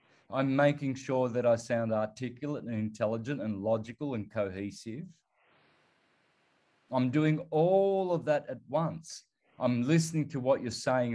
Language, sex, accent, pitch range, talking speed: English, male, Australian, 115-155 Hz, 140 wpm